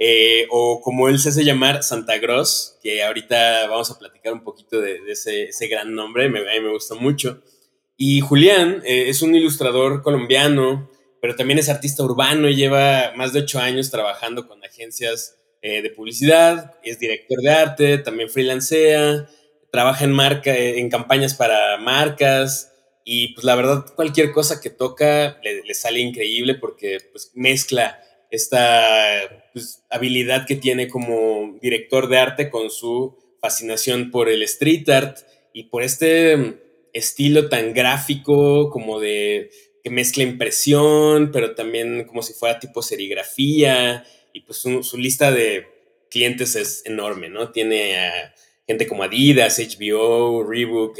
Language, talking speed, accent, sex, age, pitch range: Spanish, 155 wpm, Mexican, male, 20-39, 115-150 Hz